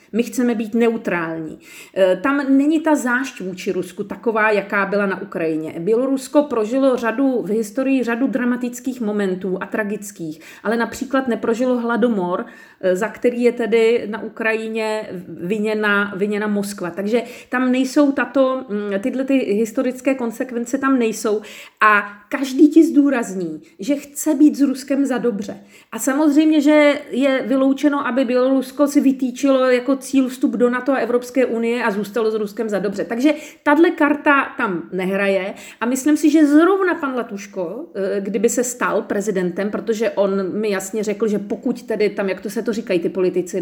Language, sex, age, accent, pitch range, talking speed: Czech, female, 40-59, native, 205-265 Hz, 155 wpm